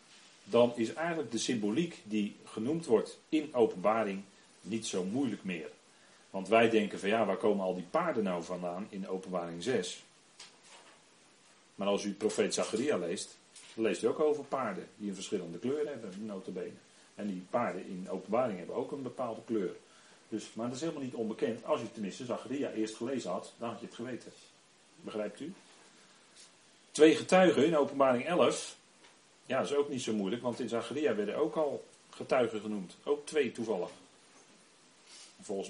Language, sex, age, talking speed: Dutch, male, 40-59, 170 wpm